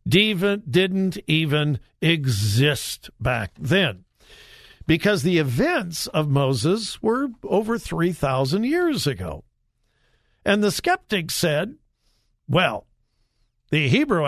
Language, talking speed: English, 95 wpm